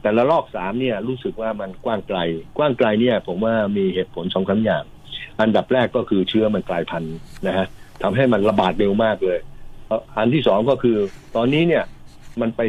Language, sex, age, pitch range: Thai, male, 60-79, 105-135 Hz